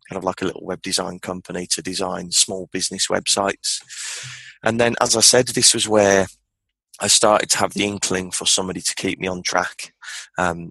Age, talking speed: 20-39, 195 wpm